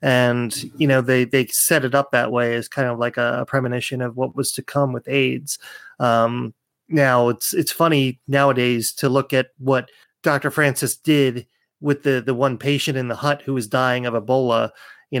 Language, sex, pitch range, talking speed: English, male, 125-145 Hz, 200 wpm